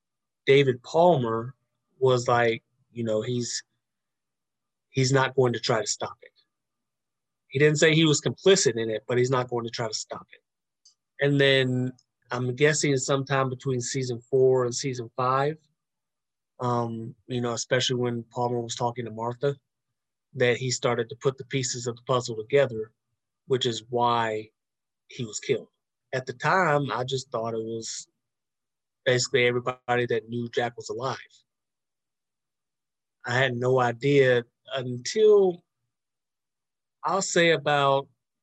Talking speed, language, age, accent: 145 wpm, English, 30-49, American